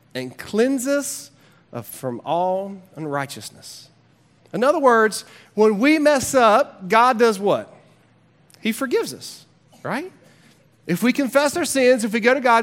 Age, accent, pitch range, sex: 30-49, American, 185-255 Hz, male